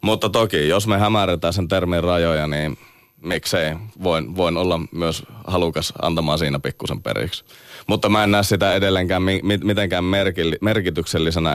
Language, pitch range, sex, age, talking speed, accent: Finnish, 75-95 Hz, male, 30-49, 140 wpm, native